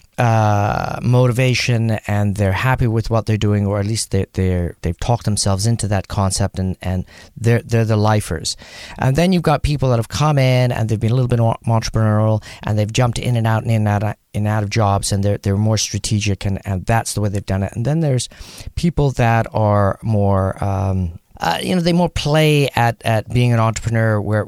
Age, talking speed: 40-59, 225 wpm